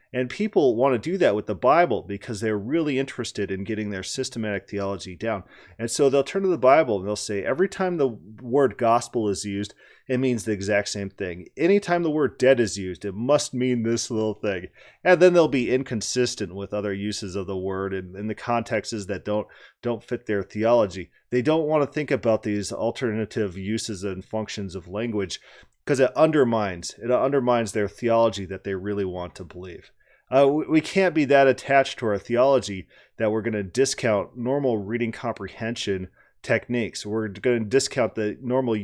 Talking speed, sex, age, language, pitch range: 195 wpm, male, 30-49, English, 105-135 Hz